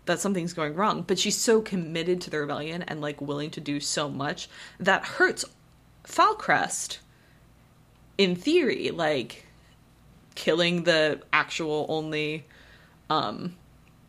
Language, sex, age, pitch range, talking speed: English, female, 20-39, 150-205 Hz, 125 wpm